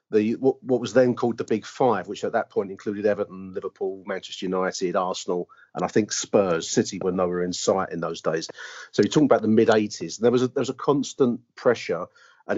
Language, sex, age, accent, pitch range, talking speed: English, male, 40-59, British, 95-125 Hz, 220 wpm